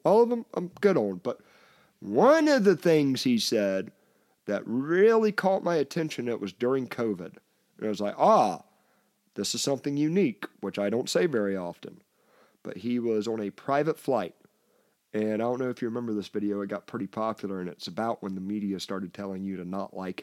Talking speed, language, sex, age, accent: 200 wpm, English, male, 40-59, American